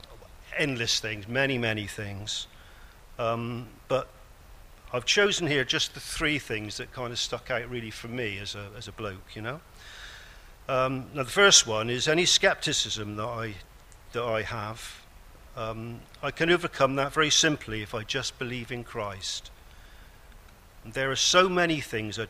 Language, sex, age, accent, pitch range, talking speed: English, male, 50-69, British, 100-125 Hz, 165 wpm